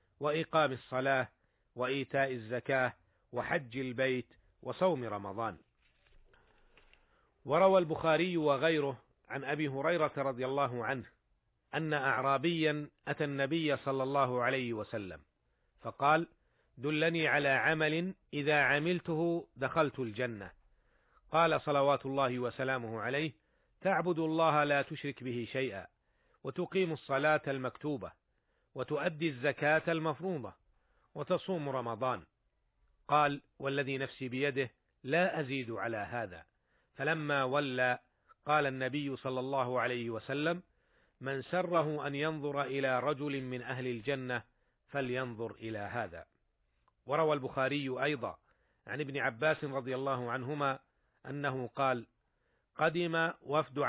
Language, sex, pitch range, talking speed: Arabic, male, 125-150 Hz, 105 wpm